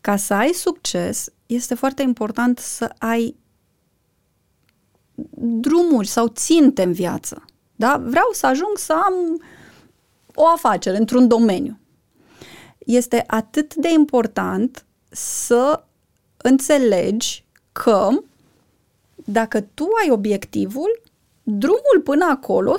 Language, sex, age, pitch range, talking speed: Romanian, female, 30-49, 220-300 Hz, 100 wpm